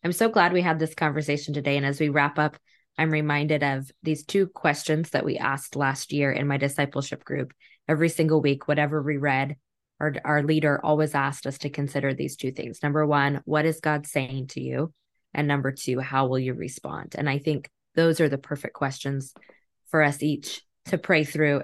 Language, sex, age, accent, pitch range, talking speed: English, female, 20-39, American, 140-160 Hz, 205 wpm